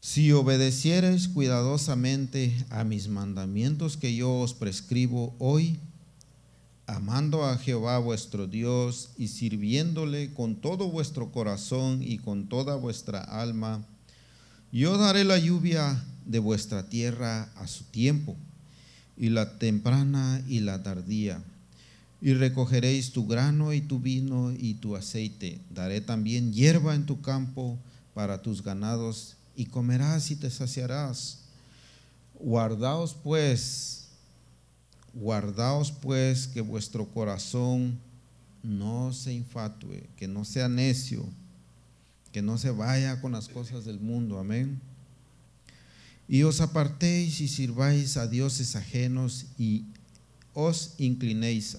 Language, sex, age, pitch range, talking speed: Spanish, male, 50-69, 110-135 Hz, 120 wpm